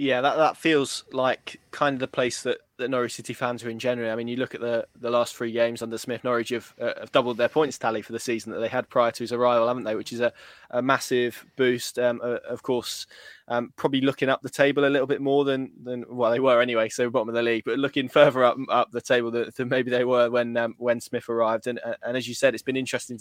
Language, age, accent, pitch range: English, 20-39, British, 120-135 Hz